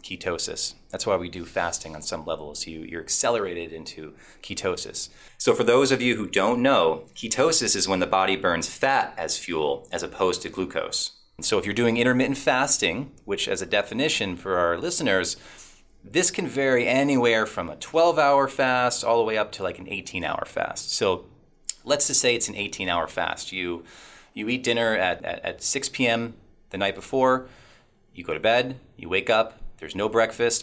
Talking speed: 190 wpm